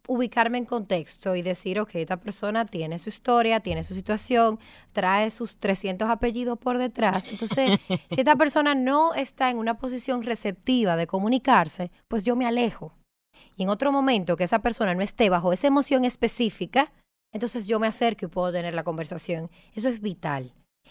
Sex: female